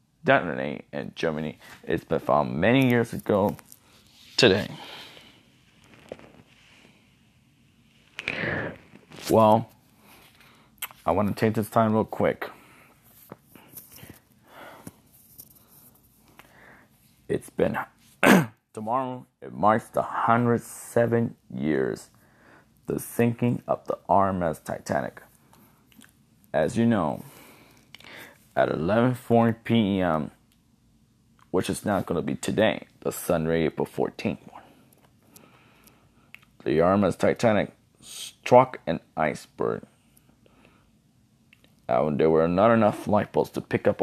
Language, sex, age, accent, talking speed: English, male, 30-49, American, 95 wpm